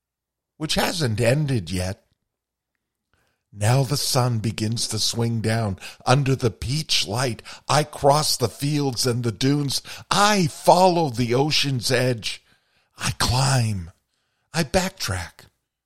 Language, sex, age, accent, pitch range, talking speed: English, male, 50-69, American, 95-125 Hz, 115 wpm